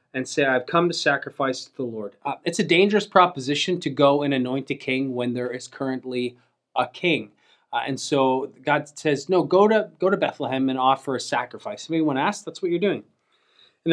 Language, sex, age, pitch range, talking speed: English, male, 30-49, 130-170 Hz, 210 wpm